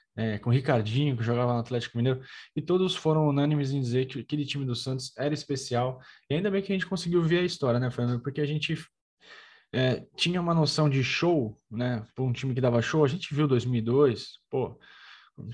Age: 10-29